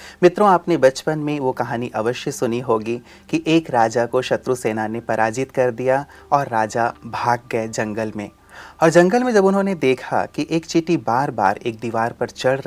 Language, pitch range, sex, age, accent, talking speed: Hindi, 110-155 Hz, male, 30-49, native, 190 wpm